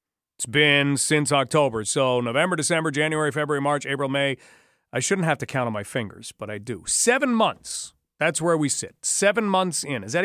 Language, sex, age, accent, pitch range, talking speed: English, male, 40-59, American, 140-180 Hz, 200 wpm